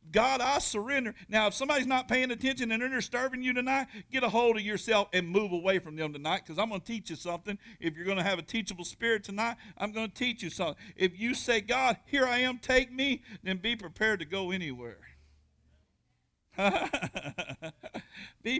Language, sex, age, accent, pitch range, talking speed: English, male, 50-69, American, 160-220 Hz, 205 wpm